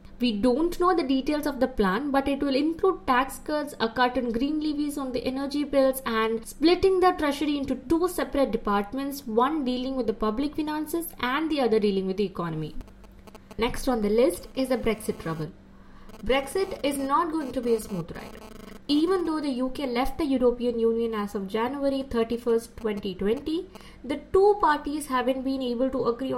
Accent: Indian